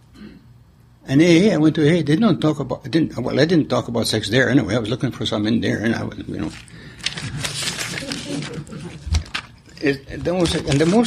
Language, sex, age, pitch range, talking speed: English, male, 60-79, 120-160 Hz, 195 wpm